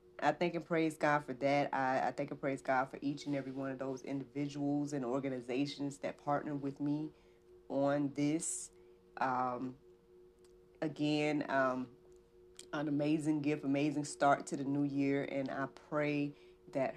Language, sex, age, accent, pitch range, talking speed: English, female, 30-49, American, 120-155 Hz, 160 wpm